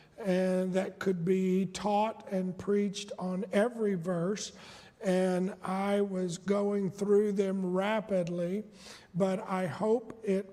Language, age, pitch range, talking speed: English, 50-69, 190-230 Hz, 120 wpm